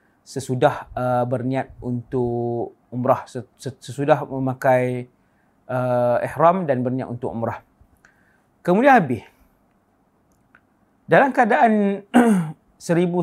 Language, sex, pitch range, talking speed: English, male, 130-185 Hz, 80 wpm